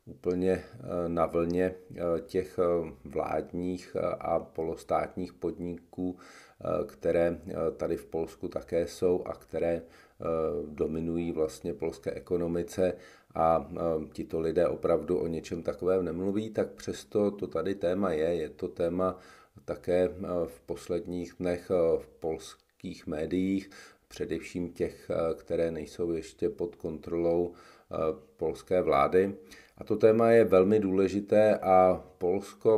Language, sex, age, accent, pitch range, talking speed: Czech, male, 40-59, native, 85-95 Hz, 110 wpm